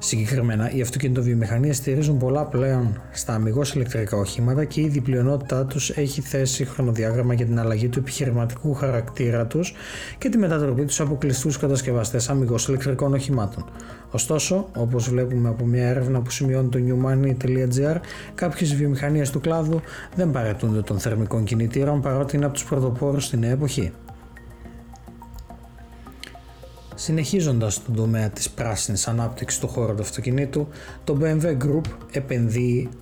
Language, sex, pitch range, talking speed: Greek, male, 120-145 Hz, 140 wpm